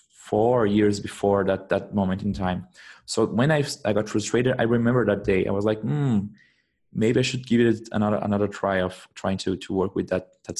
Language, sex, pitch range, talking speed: English, male, 100-120 Hz, 215 wpm